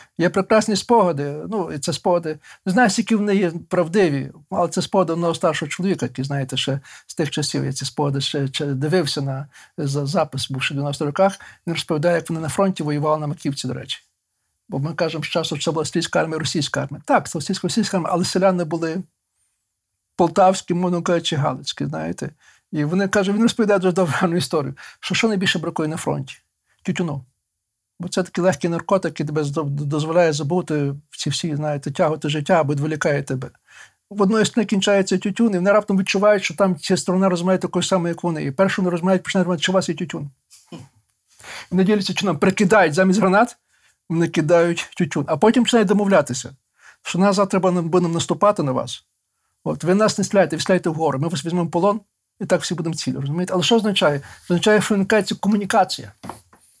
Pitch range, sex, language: 150-190 Hz, male, Ukrainian